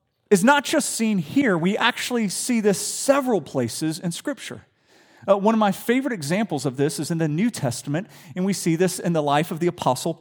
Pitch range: 145-230 Hz